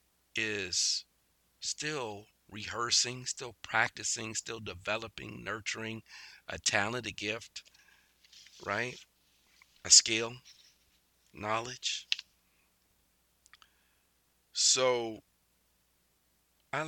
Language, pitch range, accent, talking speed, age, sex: English, 90-115 Hz, American, 65 wpm, 50-69, male